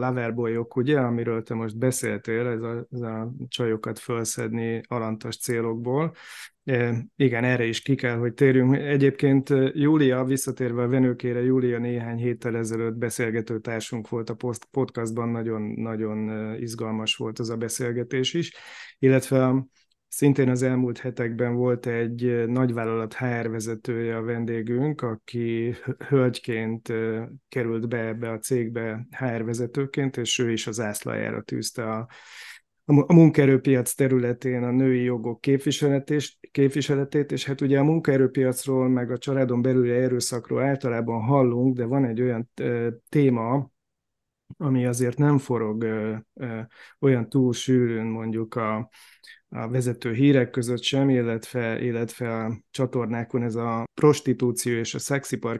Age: 20-39